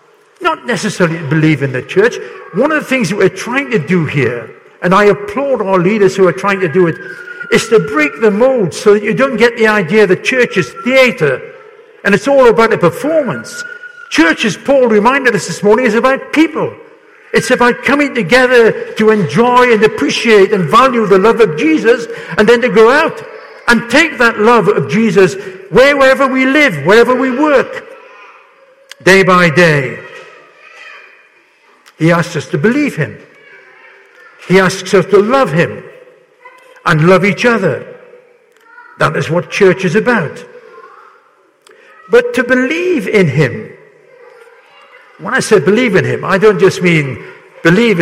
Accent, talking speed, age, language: British, 165 wpm, 60-79, English